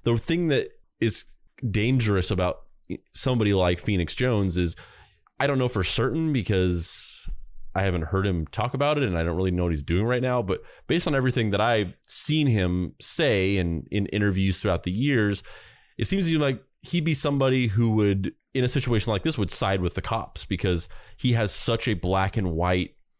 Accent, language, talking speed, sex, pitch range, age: American, English, 200 wpm, male, 90-120 Hz, 20-39